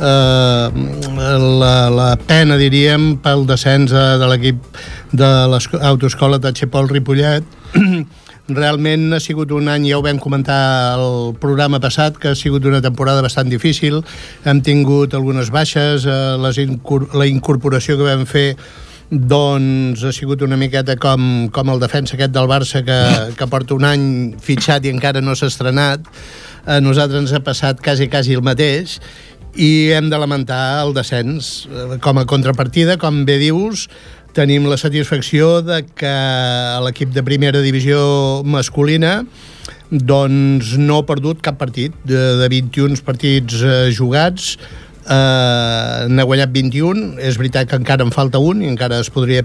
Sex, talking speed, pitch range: male, 145 wpm, 130-145 Hz